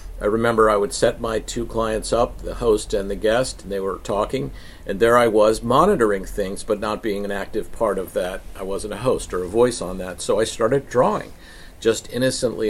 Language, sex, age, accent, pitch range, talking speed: English, male, 50-69, American, 90-115 Hz, 220 wpm